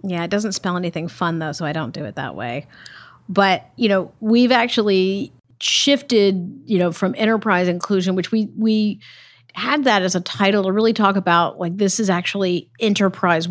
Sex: female